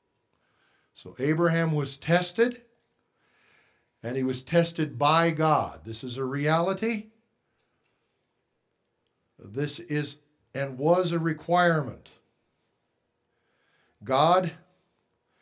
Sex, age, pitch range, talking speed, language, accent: male, 60-79, 140-175 Hz, 80 wpm, English, American